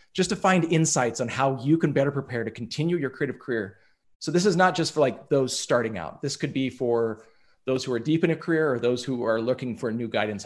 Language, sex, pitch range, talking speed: English, male, 130-170 Hz, 250 wpm